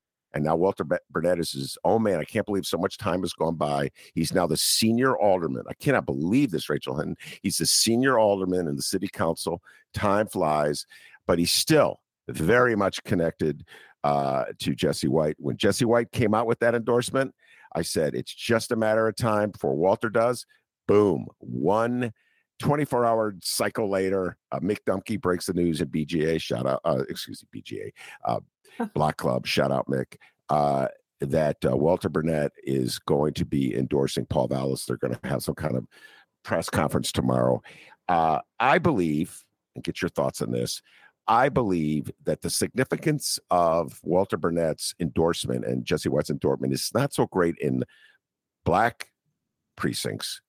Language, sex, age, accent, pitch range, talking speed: English, male, 50-69, American, 75-115 Hz, 170 wpm